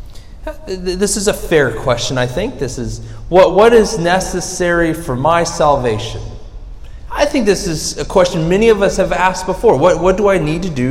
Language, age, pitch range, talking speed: English, 30-49, 120-190 Hz, 195 wpm